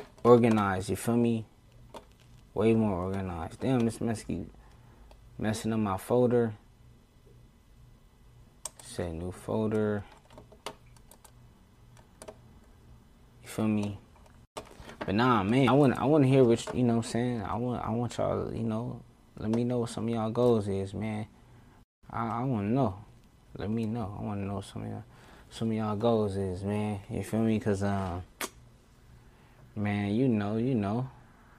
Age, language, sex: 20-39, English, male